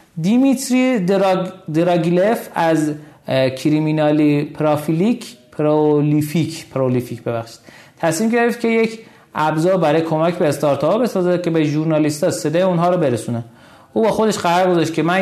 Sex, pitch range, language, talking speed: male, 140-185 Hz, Persian, 140 wpm